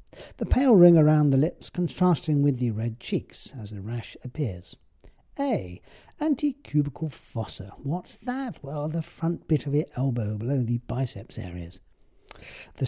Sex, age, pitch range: male, 50-69, 115-180 Hz